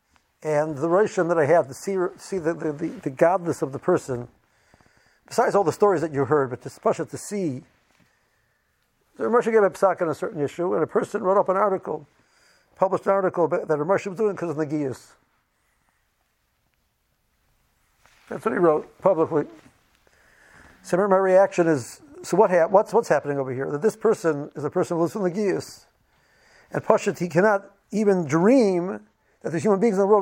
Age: 60-79